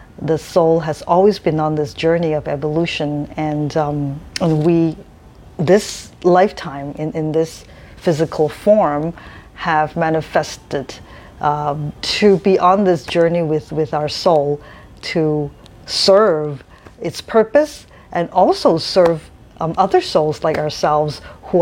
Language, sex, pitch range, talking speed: English, female, 145-175 Hz, 130 wpm